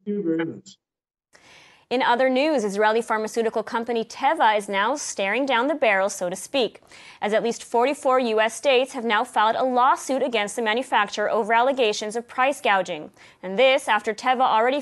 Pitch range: 195-245 Hz